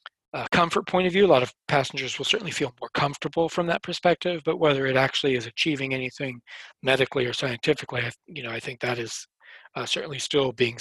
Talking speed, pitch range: 205 wpm, 125-150 Hz